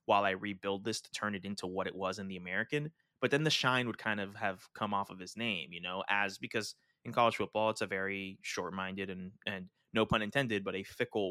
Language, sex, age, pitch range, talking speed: English, male, 20-39, 100-125 Hz, 250 wpm